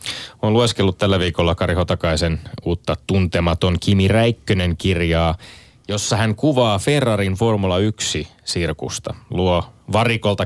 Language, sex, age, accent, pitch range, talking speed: Finnish, male, 30-49, native, 80-105 Hz, 110 wpm